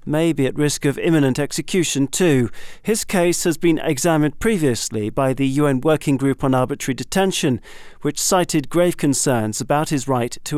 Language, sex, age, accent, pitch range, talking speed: English, male, 40-59, British, 135-165 Hz, 170 wpm